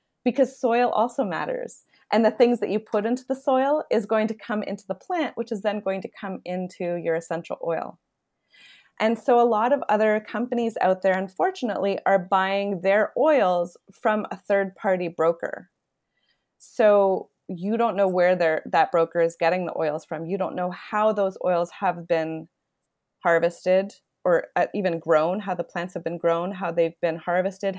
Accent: American